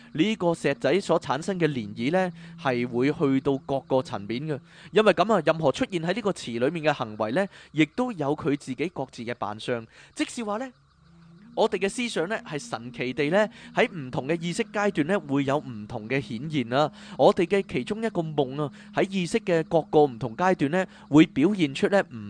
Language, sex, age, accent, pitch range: Chinese, male, 20-39, native, 125-185 Hz